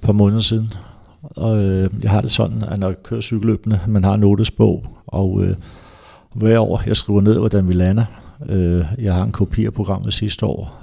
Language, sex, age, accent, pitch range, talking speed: Danish, male, 60-79, native, 95-105 Hz, 200 wpm